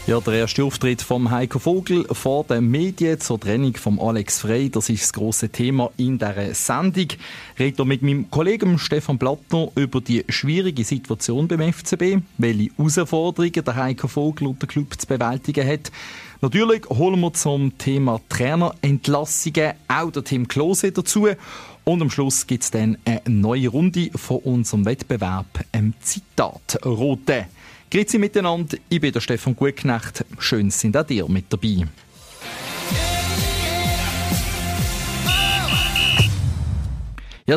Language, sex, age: German, male, 40-59